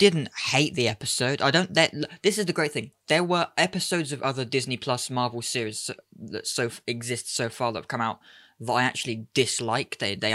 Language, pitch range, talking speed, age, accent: English, 110-135 Hz, 210 wpm, 10-29, British